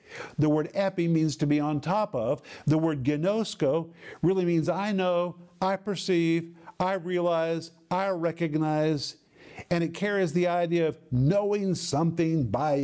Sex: male